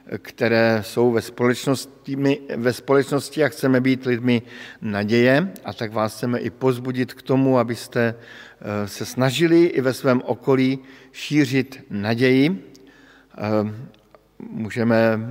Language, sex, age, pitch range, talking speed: Slovak, male, 50-69, 110-135 Hz, 105 wpm